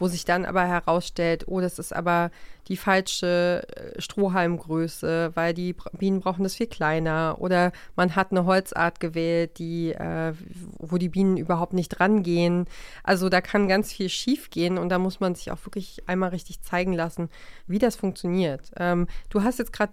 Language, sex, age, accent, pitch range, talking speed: German, female, 30-49, German, 175-195 Hz, 175 wpm